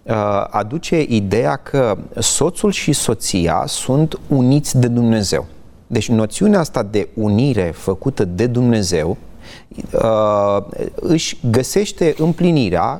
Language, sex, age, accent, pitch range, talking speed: Romanian, male, 30-49, native, 105-155 Hz, 95 wpm